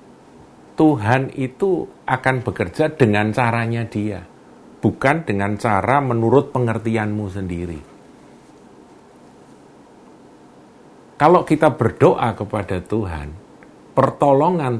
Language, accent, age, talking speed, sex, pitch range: Indonesian, native, 50-69, 75 wpm, male, 95-130 Hz